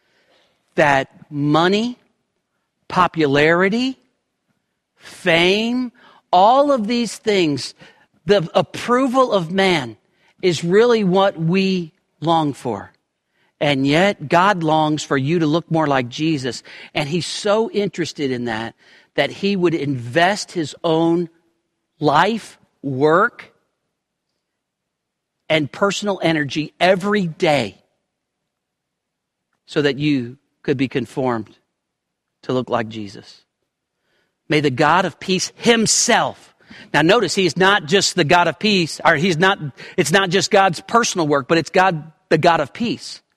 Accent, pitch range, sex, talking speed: American, 145-195 Hz, male, 125 wpm